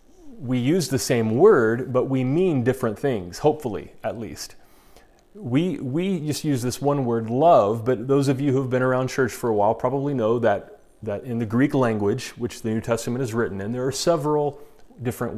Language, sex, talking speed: English, male, 200 wpm